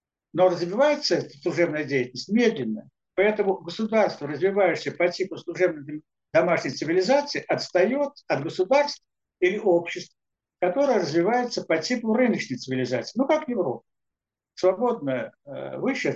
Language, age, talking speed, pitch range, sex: Russian, 60-79, 110 wpm, 150-225 Hz, male